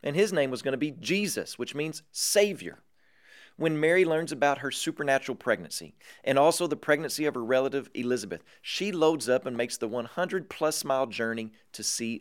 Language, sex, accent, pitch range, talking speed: English, male, American, 120-170 Hz, 180 wpm